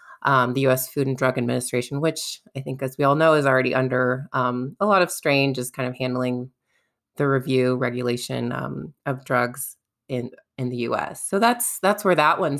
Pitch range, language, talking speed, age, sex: 130-150 Hz, English, 200 wpm, 20-39, female